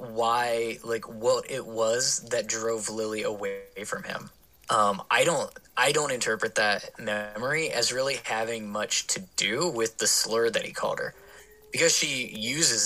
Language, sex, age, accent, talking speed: English, male, 20-39, American, 165 wpm